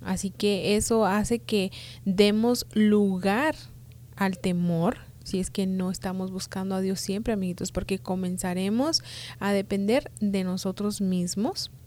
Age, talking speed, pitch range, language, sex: 30-49, 130 wpm, 180-225 Hz, English, female